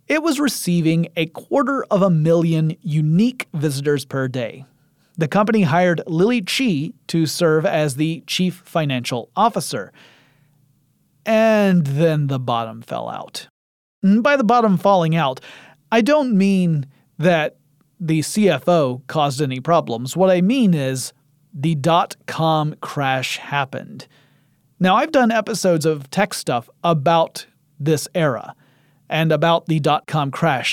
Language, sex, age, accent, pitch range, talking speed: English, male, 30-49, American, 145-185 Hz, 130 wpm